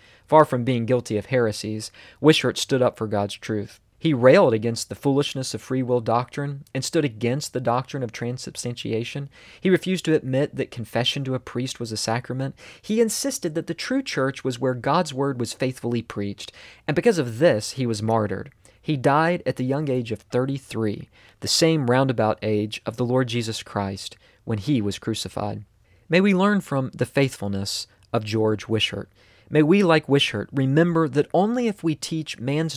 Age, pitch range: 40-59, 110-140 Hz